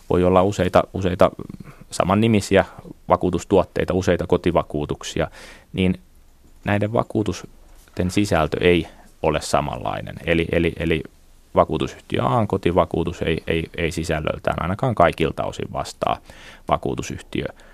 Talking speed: 100 wpm